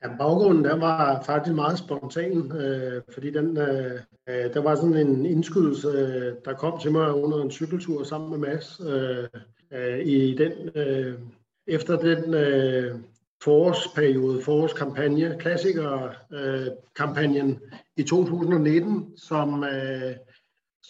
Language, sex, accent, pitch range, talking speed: Danish, male, native, 135-165 Hz, 120 wpm